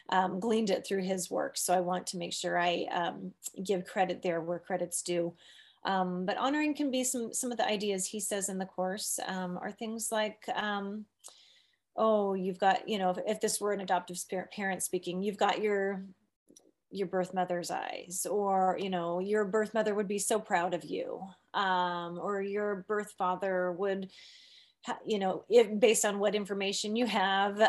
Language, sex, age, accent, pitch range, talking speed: English, female, 30-49, American, 185-230 Hz, 190 wpm